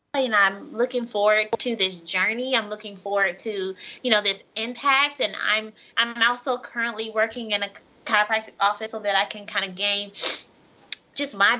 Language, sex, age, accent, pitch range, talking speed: English, female, 20-39, American, 205-255 Hz, 175 wpm